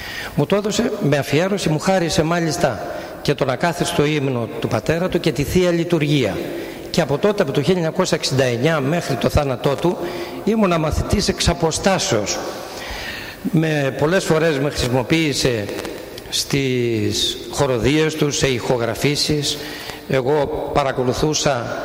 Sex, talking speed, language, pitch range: male, 125 wpm, Greek, 130-160 Hz